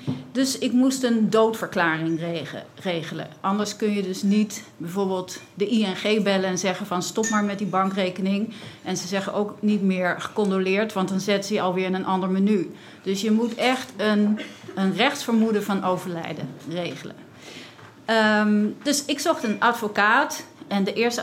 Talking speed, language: 165 wpm, Dutch